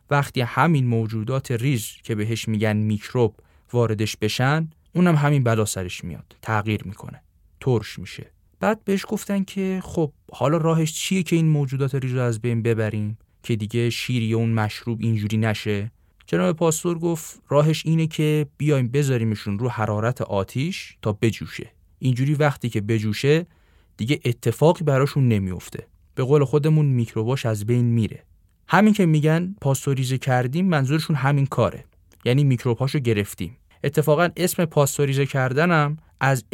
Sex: male